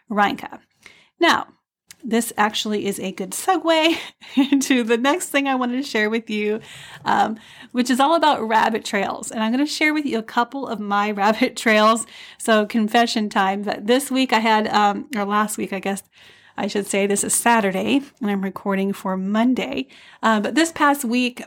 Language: English